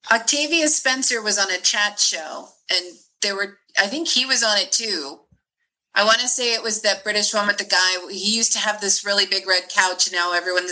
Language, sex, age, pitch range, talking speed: English, female, 30-49, 190-245 Hz, 230 wpm